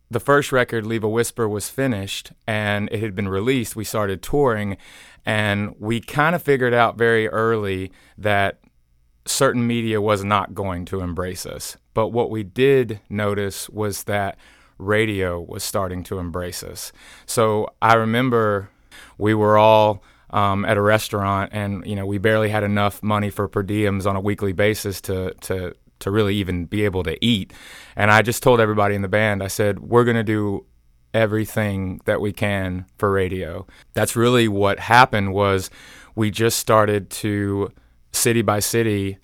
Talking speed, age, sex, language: 170 wpm, 30-49, male, English